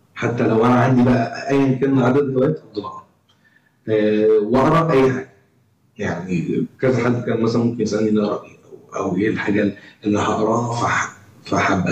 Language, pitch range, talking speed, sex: Arabic, 105-130 Hz, 135 wpm, male